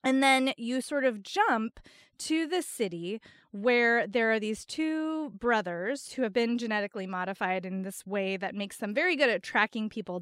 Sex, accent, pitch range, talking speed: female, American, 205-260 Hz, 180 wpm